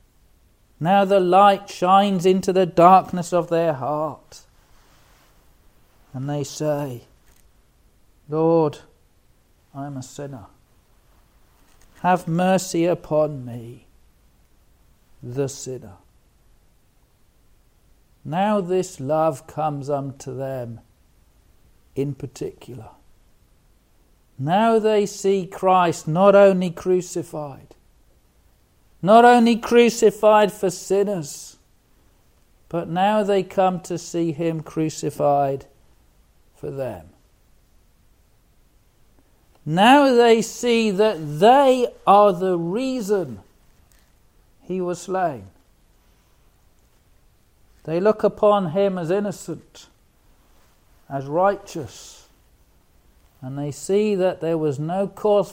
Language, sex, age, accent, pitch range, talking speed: English, male, 50-69, British, 130-195 Hz, 90 wpm